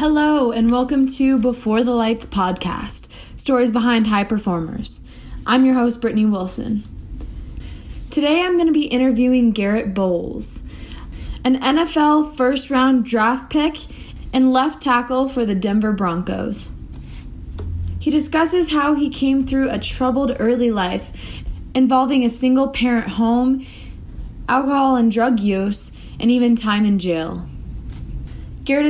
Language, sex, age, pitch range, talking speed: English, female, 20-39, 215-270 Hz, 130 wpm